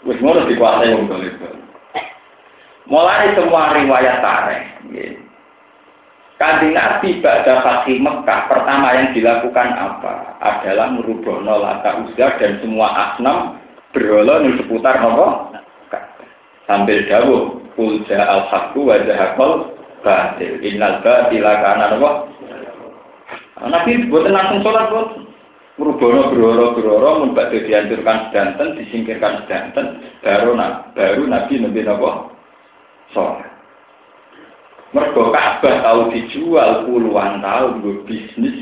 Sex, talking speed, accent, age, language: male, 100 wpm, native, 50-69, Indonesian